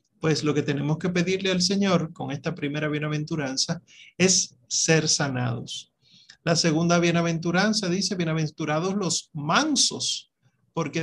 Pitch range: 155-190 Hz